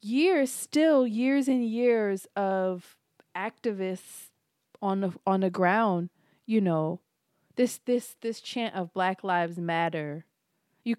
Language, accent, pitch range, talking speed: English, American, 170-230 Hz, 125 wpm